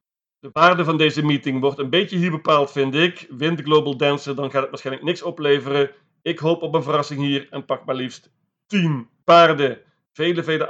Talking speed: 195 wpm